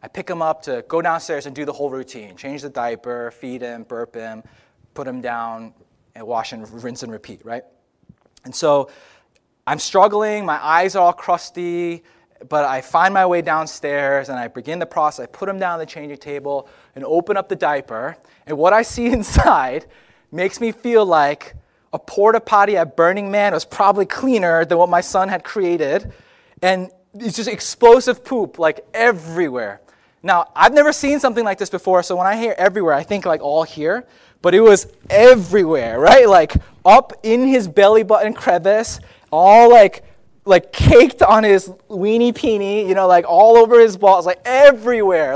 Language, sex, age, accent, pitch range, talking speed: English, male, 20-39, American, 155-220 Hz, 185 wpm